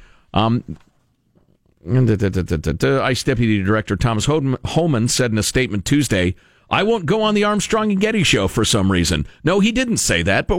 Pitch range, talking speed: 110-165 Hz, 165 wpm